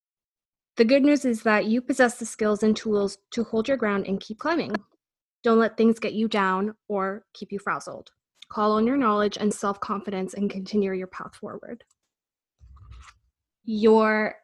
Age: 20-39